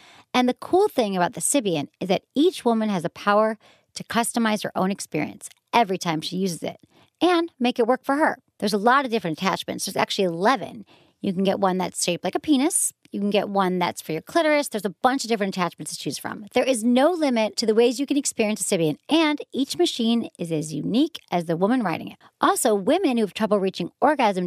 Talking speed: 235 wpm